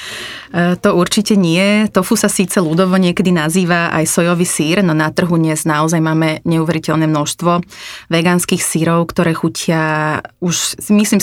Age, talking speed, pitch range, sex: 30-49, 140 wpm, 160-185 Hz, female